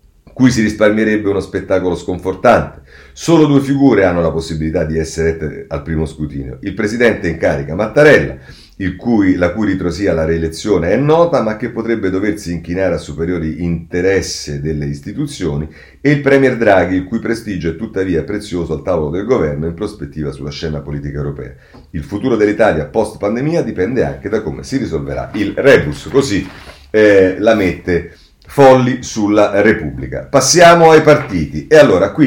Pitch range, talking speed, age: 85-140 Hz, 155 wpm, 40-59